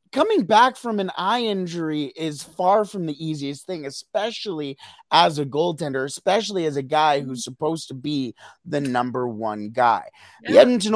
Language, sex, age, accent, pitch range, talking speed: English, male, 30-49, American, 140-190 Hz, 165 wpm